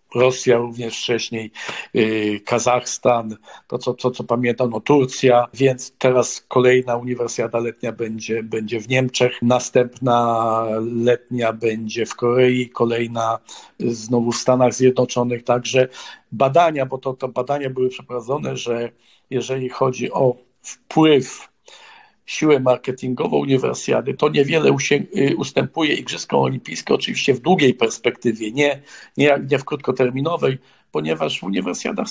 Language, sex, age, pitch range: Polish, male, 50-69, 120-135 Hz